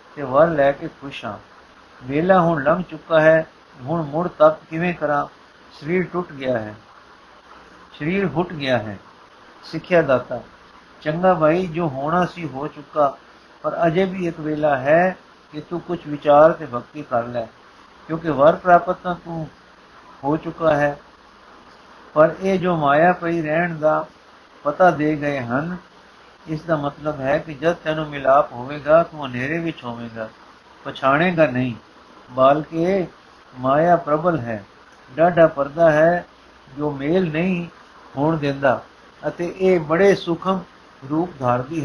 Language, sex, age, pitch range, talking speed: Punjabi, male, 50-69, 145-175 Hz, 145 wpm